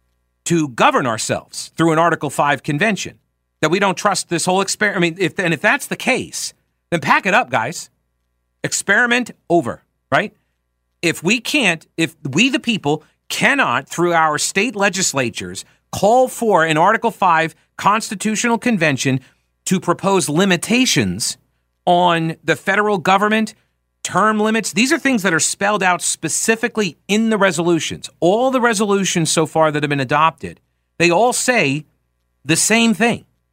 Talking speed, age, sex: 150 wpm, 40-59, male